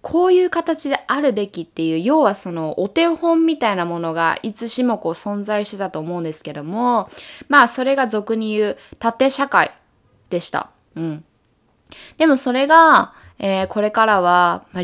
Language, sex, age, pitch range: Japanese, female, 20-39, 170-255 Hz